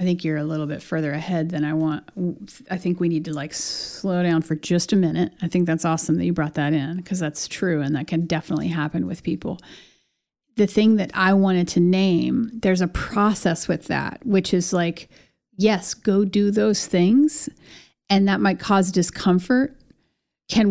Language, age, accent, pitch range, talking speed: English, 30-49, American, 175-215 Hz, 195 wpm